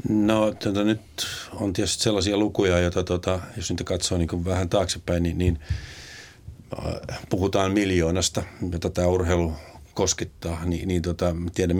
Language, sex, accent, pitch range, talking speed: Finnish, male, native, 90-110 Hz, 135 wpm